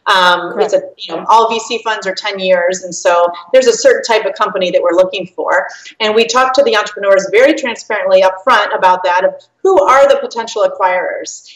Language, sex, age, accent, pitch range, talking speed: English, female, 30-49, American, 190-255 Hz, 215 wpm